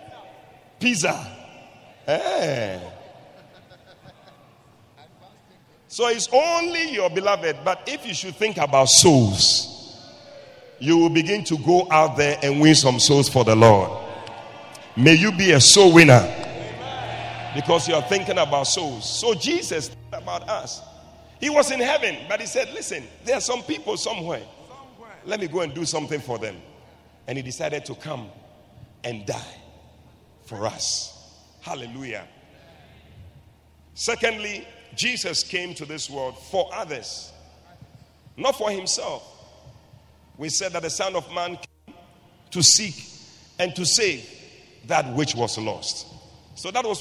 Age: 50-69